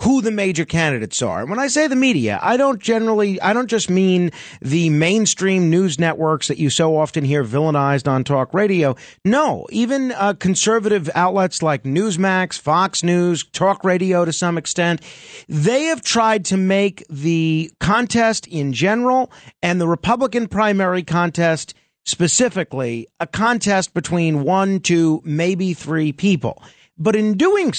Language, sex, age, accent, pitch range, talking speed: English, male, 40-59, American, 150-200 Hz, 155 wpm